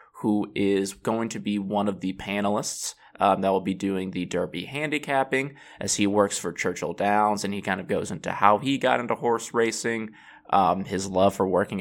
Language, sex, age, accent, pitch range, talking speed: English, male, 20-39, American, 95-110 Hz, 205 wpm